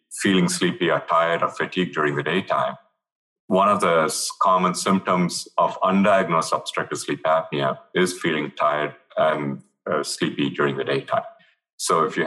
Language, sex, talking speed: English, male, 150 wpm